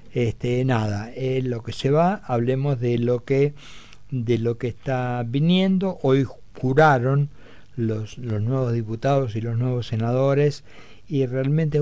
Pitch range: 115-150 Hz